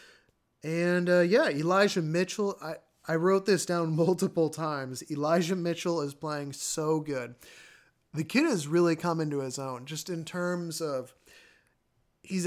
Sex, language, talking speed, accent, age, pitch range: male, English, 150 wpm, American, 30-49, 150-185 Hz